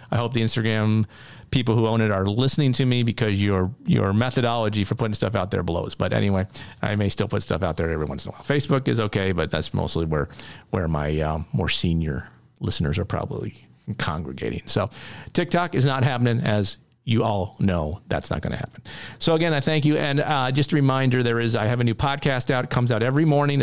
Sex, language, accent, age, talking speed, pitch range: male, English, American, 40-59, 225 wpm, 100-130 Hz